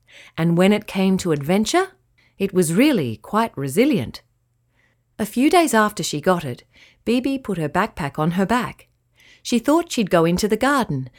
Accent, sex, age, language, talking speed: Australian, female, 40-59, English, 170 wpm